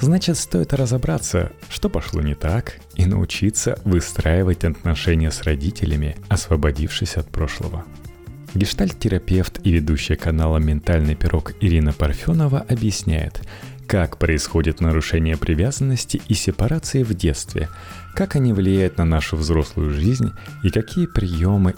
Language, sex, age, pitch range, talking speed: Russian, male, 30-49, 80-110 Hz, 120 wpm